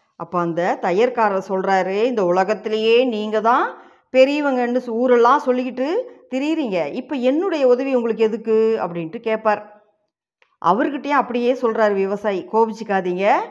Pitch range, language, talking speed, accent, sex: 200-255 Hz, Tamil, 105 wpm, native, female